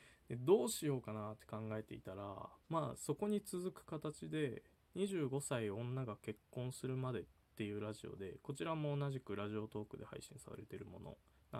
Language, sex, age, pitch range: Japanese, male, 20-39, 110-155 Hz